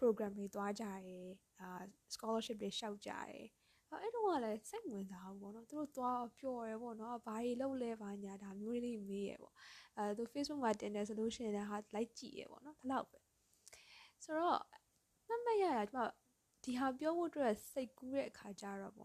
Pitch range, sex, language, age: 205-290 Hz, female, English, 10-29